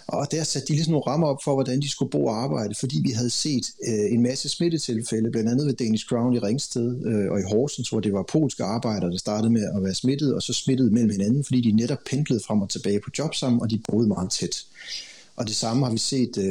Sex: male